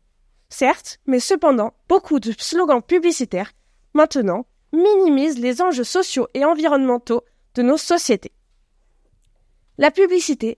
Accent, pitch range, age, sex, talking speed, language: French, 245-330 Hz, 20-39, female, 110 wpm, French